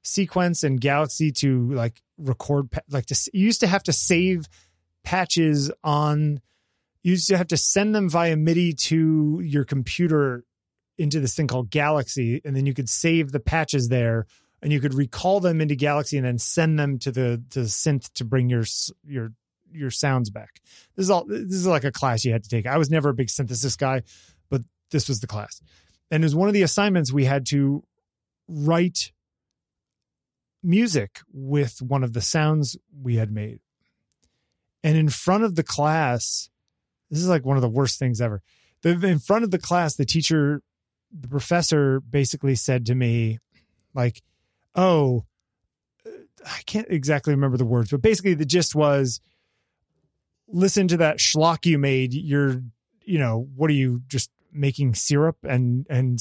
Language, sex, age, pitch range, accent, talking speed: English, male, 30-49, 125-160 Hz, American, 175 wpm